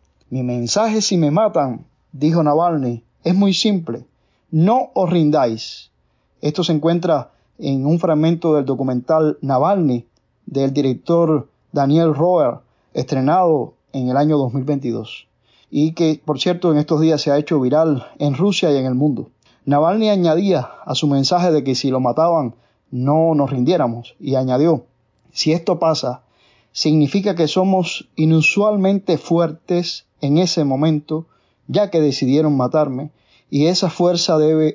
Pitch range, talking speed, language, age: 135-175 Hz, 140 wpm, English, 30-49